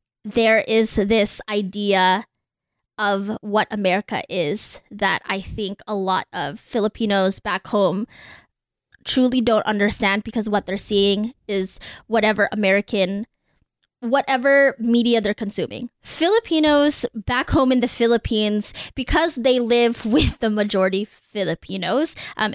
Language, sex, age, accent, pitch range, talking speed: English, female, 10-29, American, 210-250 Hz, 120 wpm